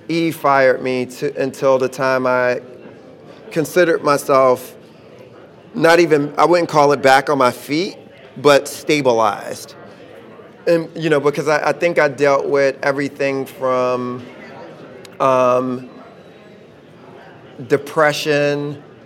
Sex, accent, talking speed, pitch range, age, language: male, American, 115 wpm, 130-150 Hz, 30-49, English